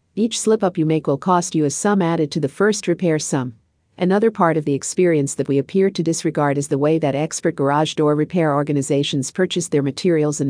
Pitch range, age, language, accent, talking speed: 140-180 Hz, 50-69, English, American, 215 wpm